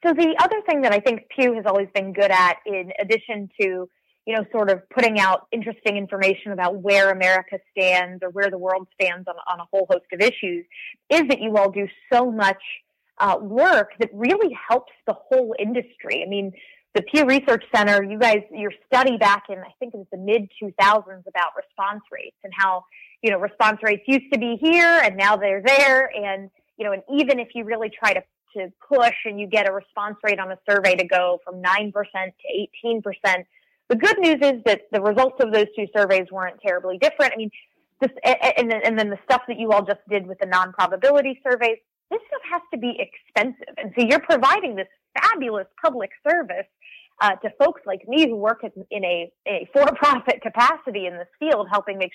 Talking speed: 205 wpm